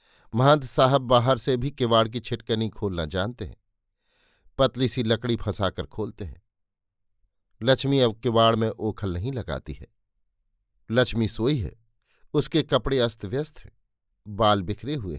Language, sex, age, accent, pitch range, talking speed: Hindi, male, 50-69, native, 100-130 Hz, 140 wpm